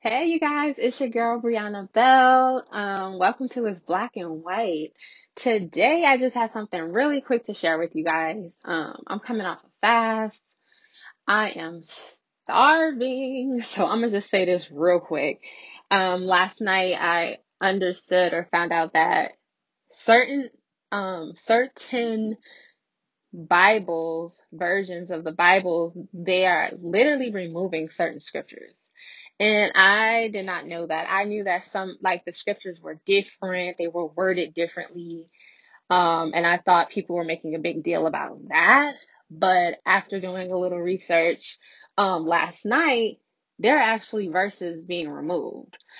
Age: 20-39